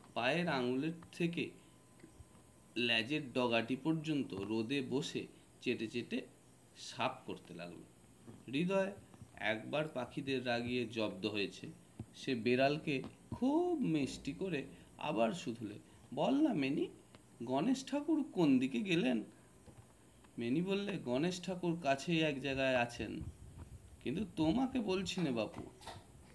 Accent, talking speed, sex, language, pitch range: native, 85 wpm, male, Bengali, 130-210 Hz